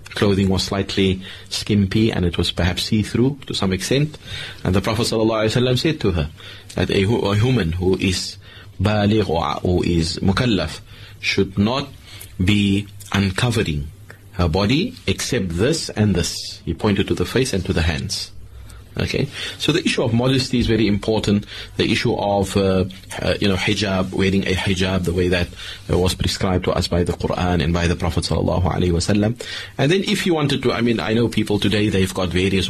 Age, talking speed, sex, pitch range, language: 30-49, 175 wpm, male, 95-110 Hz, English